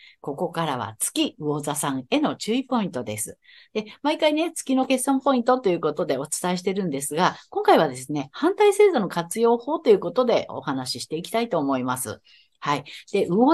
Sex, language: female, Japanese